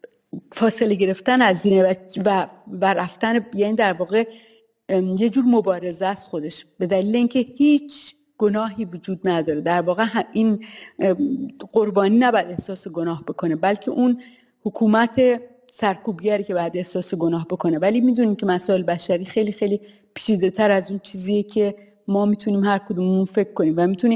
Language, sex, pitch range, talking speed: Persian, female, 185-220 Hz, 145 wpm